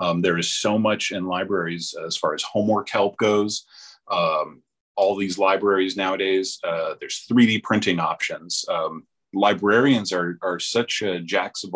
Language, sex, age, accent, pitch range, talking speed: English, male, 30-49, American, 85-110 Hz, 165 wpm